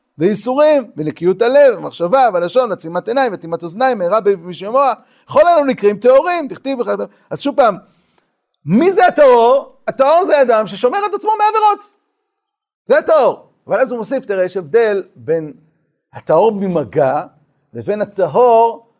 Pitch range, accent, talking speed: 170-280 Hz, native, 140 wpm